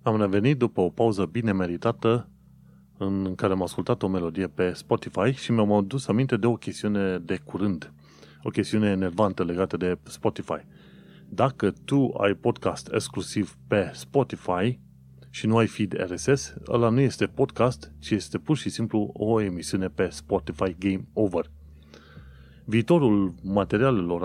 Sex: male